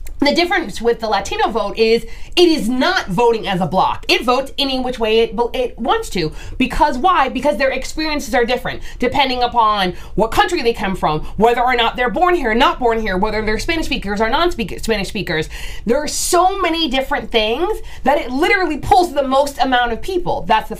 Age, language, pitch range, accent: 20-39, English, 215-320 Hz, American